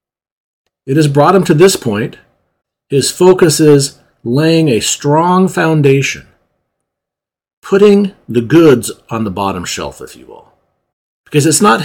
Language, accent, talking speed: English, American, 135 wpm